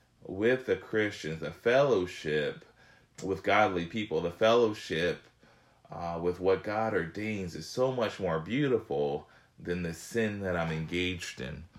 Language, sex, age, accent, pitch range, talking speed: English, male, 20-39, American, 80-100 Hz, 135 wpm